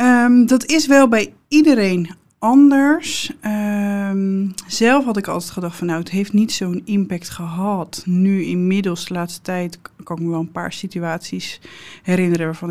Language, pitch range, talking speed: Dutch, 175-215 Hz, 165 wpm